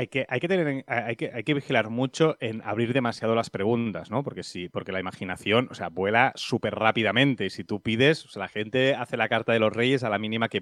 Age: 30-49